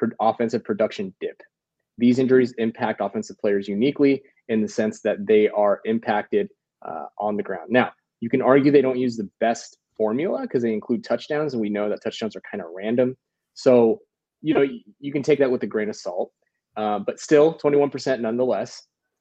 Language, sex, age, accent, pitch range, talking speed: English, male, 20-39, American, 110-135 Hz, 195 wpm